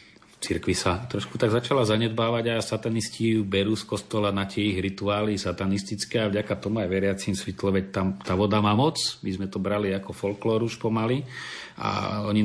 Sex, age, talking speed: male, 40-59, 180 wpm